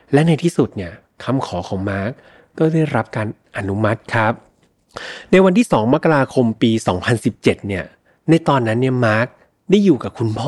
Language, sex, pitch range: Thai, male, 105-150 Hz